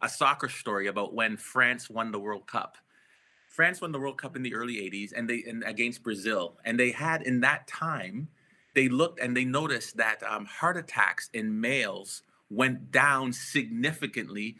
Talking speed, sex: 180 wpm, male